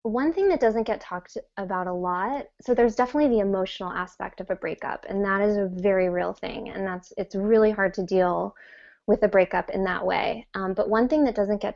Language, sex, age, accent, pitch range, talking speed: English, female, 20-39, American, 190-220 Hz, 230 wpm